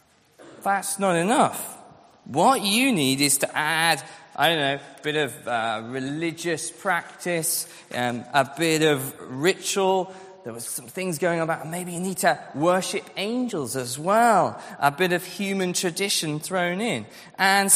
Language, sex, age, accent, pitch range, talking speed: English, male, 20-39, British, 155-220 Hz, 155 wpm